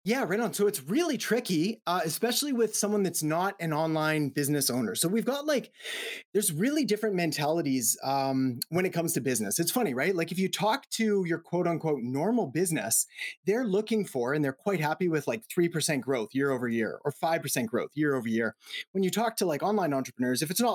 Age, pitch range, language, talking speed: 30-49, 135-210 Hz, English, 215 wpm